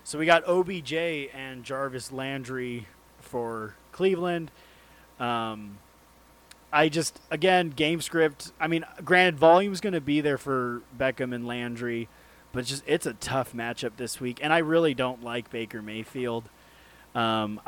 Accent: American